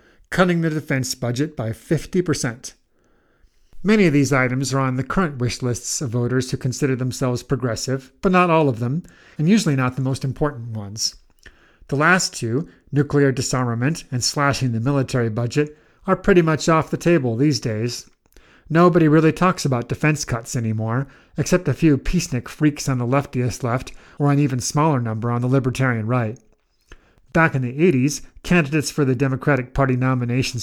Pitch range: 125-155 Hz